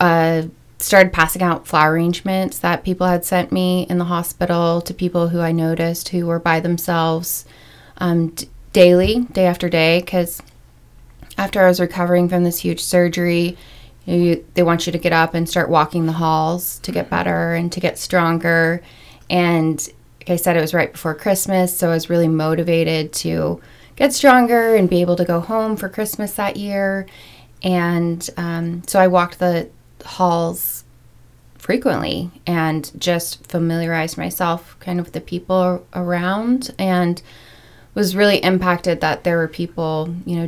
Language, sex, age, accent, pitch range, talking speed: English, female, 20-39, American, 165-180 Hz, 165 wpm